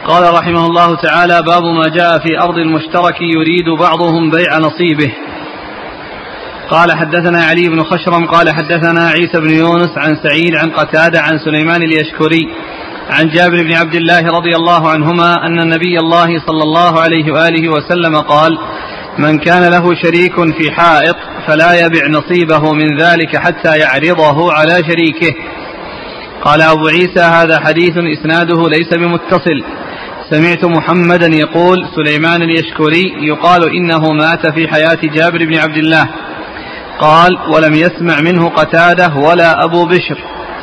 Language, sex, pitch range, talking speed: Arabic, male, 160-170 Hz, 135 wpm